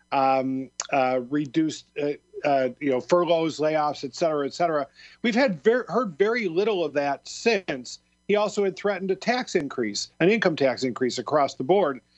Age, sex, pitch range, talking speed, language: 50-69, male, 145-185 Hz, 175 wpm, English